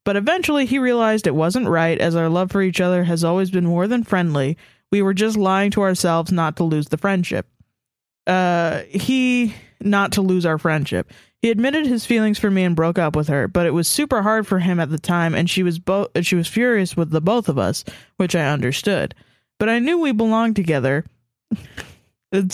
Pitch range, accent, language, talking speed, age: 165-220 Hz, American, English, 215 wpm, 20-39